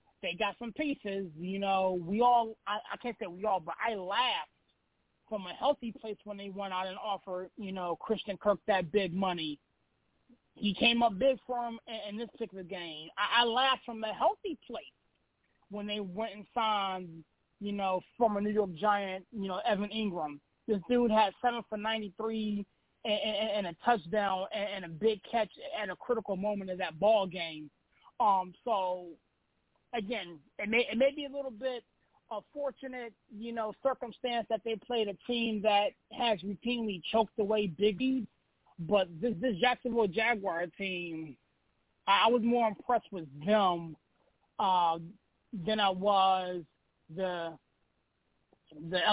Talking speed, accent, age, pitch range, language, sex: 165 wpm, American, 20-39, 190-235 Hz, English, male